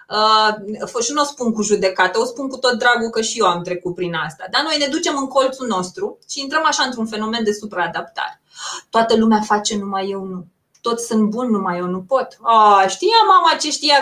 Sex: female